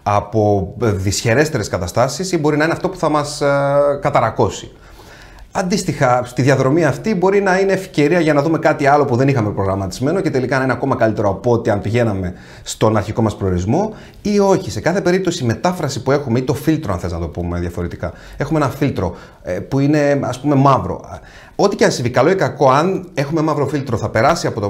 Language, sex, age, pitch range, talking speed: Greek, male, 30-49, 100-150 Hz, 205 wpm